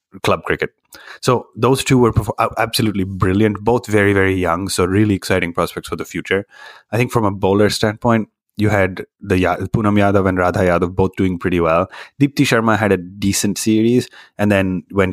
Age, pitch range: 30-49, 90-110 Hz